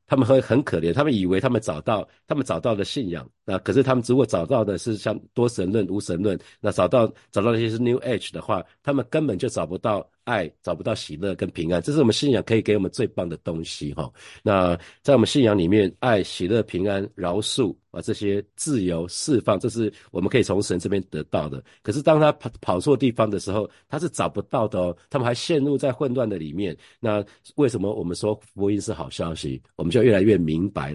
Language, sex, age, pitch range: Chinese, male, 50-69, 90-120 Hz